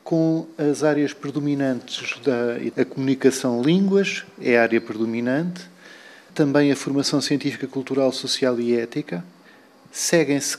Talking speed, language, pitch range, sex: 115 wpm, Portuguese, 125-165 Hz, male